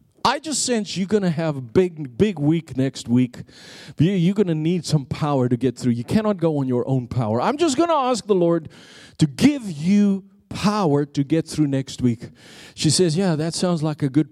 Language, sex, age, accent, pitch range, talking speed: English, male, 40-59, American, 135-190 Hz, 220 wpm